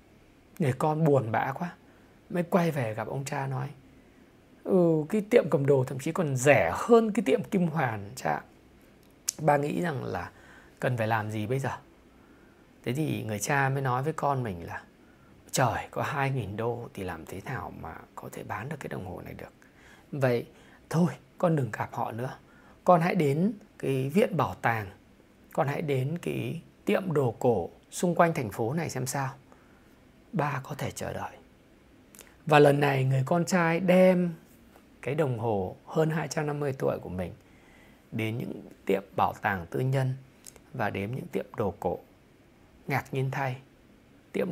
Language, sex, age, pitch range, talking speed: Vietnamese, male, 20-39, 120-160 Hz, 175 wpm